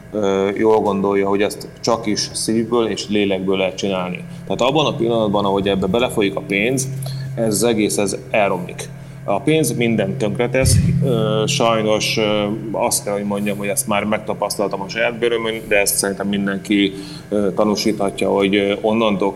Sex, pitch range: male, 100-120 Hz